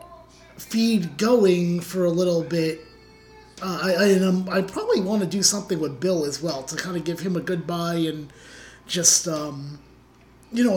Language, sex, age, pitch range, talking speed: English, male, 30-49, 160-195 Hz, 185 wpm